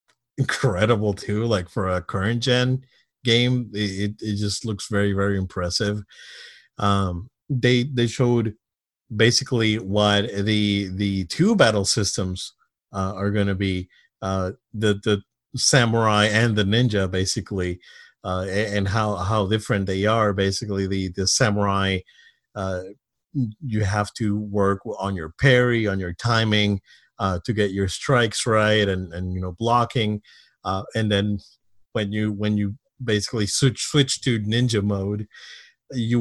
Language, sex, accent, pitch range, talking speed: English, male, American, 100-120 Hz, 145 wpm